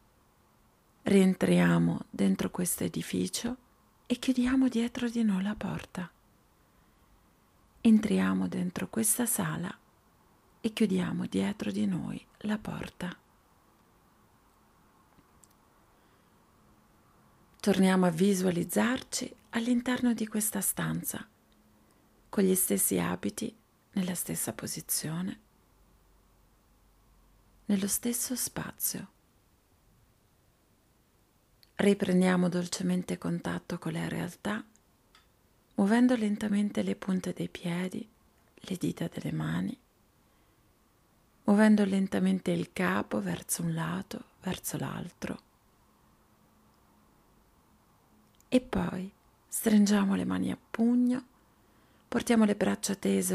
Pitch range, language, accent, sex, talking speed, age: 175-220 Hz, Italian, native, female, 85 wpm, 40-59